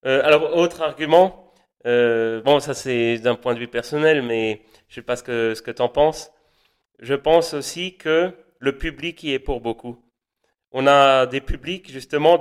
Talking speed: 195 wpm